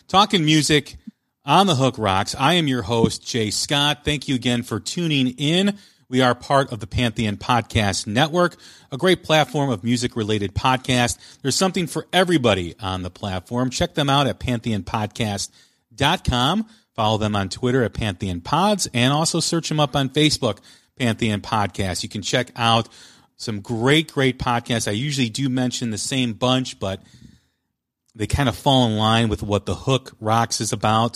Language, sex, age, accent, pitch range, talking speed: English, male, 40-59, American, 110-145 Hz, 170 wpm